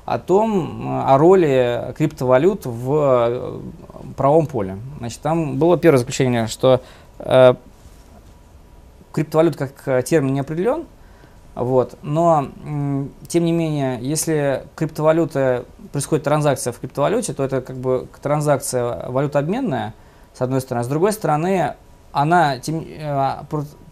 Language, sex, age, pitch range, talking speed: Russian, male, 20-39, 125-160 Hz, 120 wpm